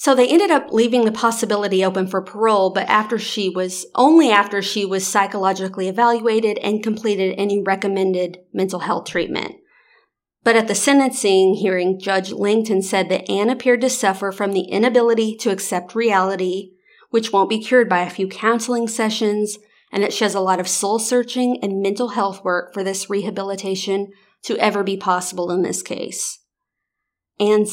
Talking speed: 170 wpm